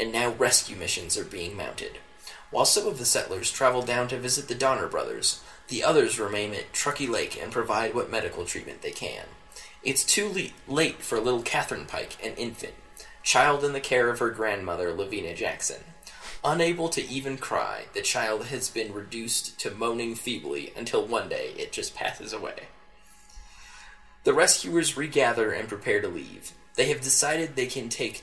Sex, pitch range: male, 120-190 Hz